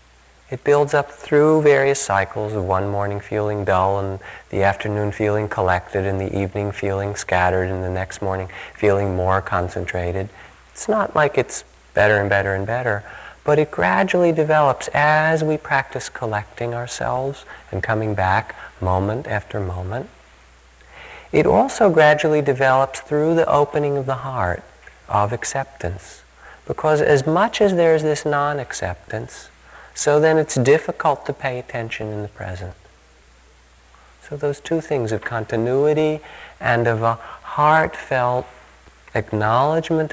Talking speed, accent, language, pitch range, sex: 140 wpm, American, English, 90-135 Hz, male